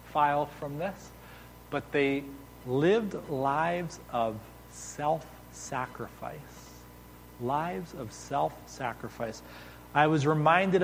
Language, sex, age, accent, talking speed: English, male, 30-49, American, 85 wpm